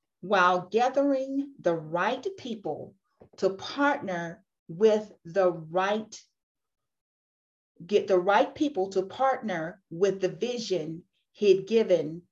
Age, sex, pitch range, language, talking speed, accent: 50-69, female, 190-260 Hz, English, 100 wpm, American